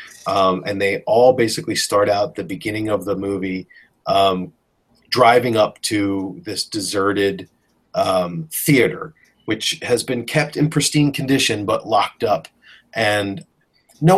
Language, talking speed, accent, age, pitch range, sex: English, 135 wpm, American, 30-49, 100-135 Hz, male